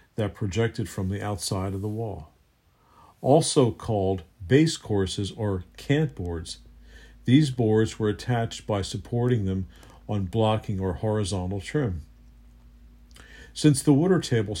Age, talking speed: 50-69, 125 wpm